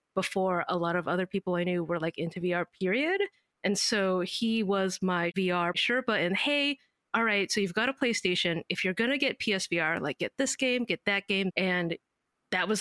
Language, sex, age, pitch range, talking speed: English, female, 30-49, 180-225 Hz, 210 wpm